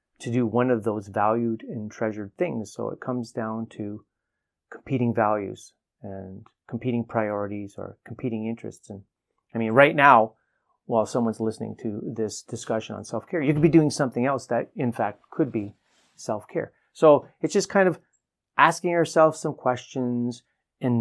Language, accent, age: English, American, 30-49